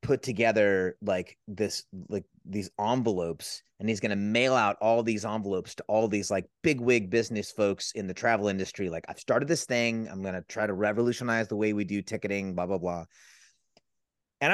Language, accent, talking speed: English, American, 190 wpm